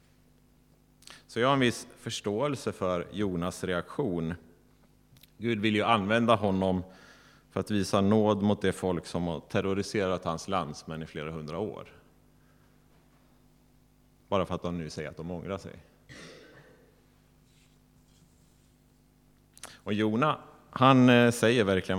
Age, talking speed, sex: 30-49, 125 wpm, male